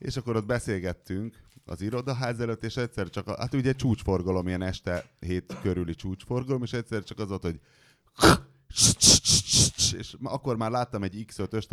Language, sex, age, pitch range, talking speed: Hungarian, male, 30-49, 85-120 Hz, 160 wpm